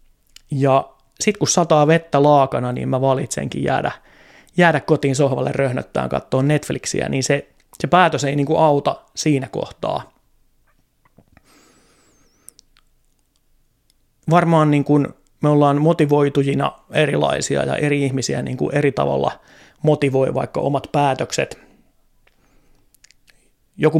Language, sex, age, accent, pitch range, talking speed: Finnish, male, 30-49, native, 135-160 Hz, 100 wpm